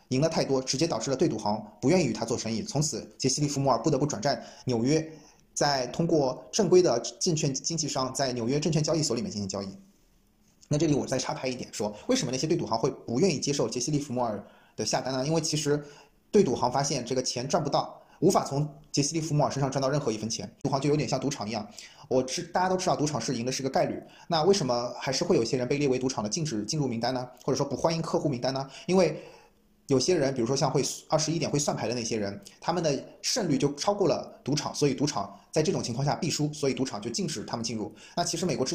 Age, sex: 20-39, male